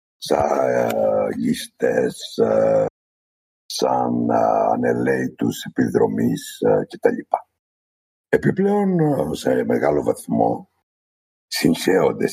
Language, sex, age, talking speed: Greek, male, 60-79, 60 wpm